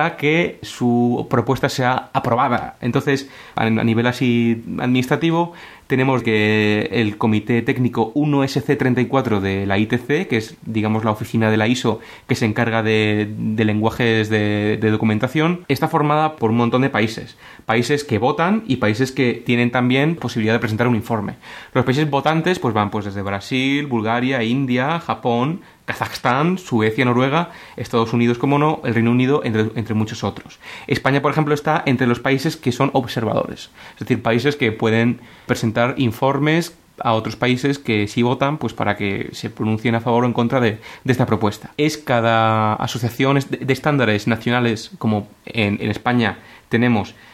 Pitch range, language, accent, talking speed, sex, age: 110-135 Hz, Spanish, Spanish, 165 wpm, male, 30-49